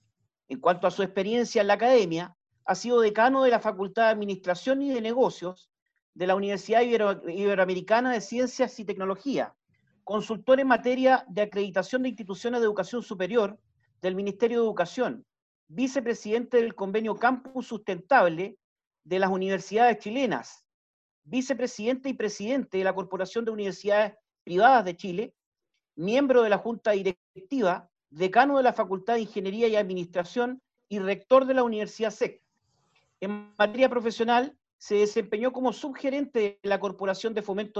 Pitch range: 195-245 Hz